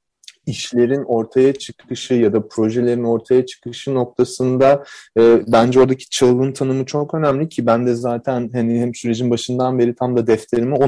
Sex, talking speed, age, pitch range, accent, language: male, 160 wpm, 30-49, 115-140 Hz, native, Turkish